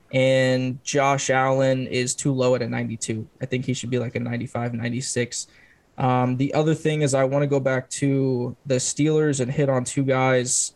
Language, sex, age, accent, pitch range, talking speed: English, male, 20-39, American, 125-140 Hz, 200 wpm